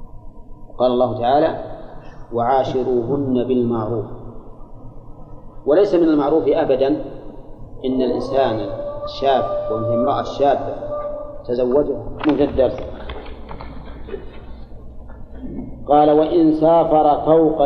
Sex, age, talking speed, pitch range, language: male, 40-59, 75 wpm, 120-160 Hz, Arabic